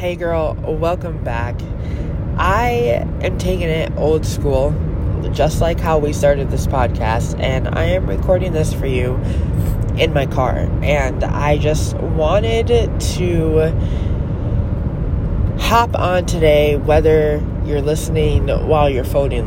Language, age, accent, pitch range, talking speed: English, 20-39, American, 85-135 Hz, 125 wpm